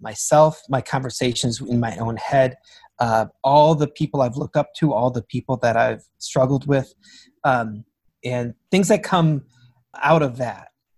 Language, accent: English, American